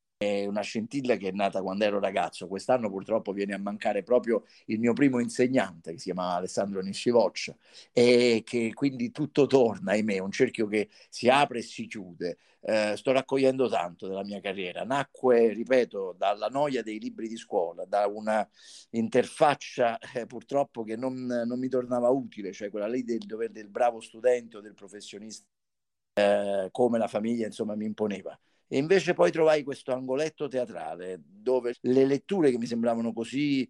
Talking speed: 170 wpm